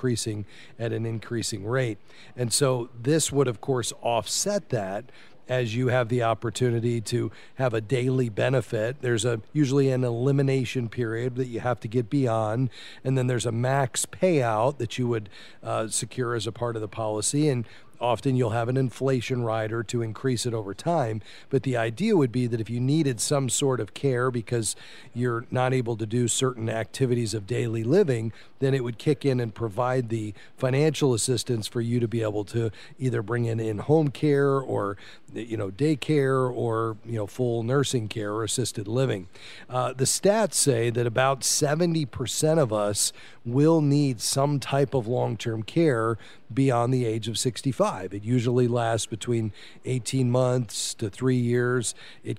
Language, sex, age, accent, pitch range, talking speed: English, male, 40-59, American, 115-135 Hz, 175 wpm